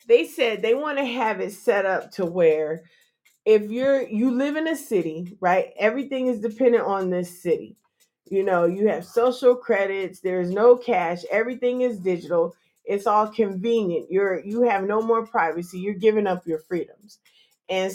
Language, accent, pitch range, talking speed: English, American, 195-245 Hz, 175 wpm